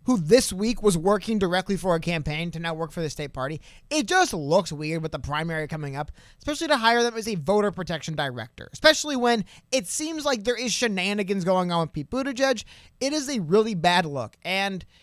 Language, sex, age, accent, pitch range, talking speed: English, male, 30-49, American, 160-235 Hz, 215 wpm